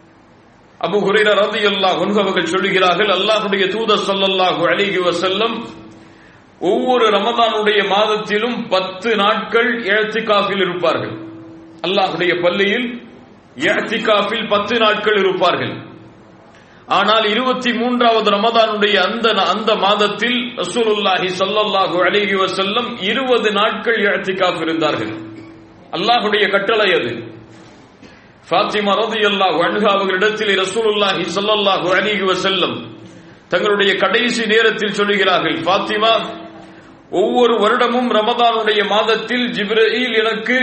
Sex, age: male, 40-59